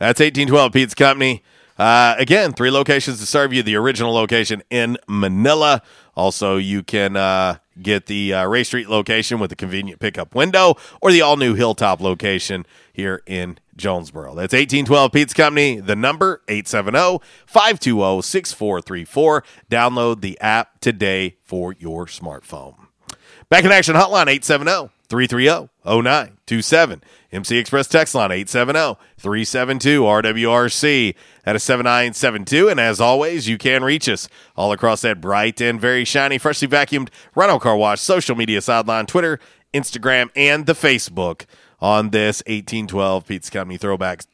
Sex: male